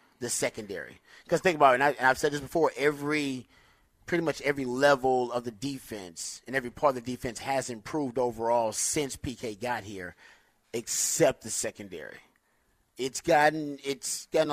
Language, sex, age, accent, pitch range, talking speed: English, male, 30-49, American, 120-145 Hz, 170 wpm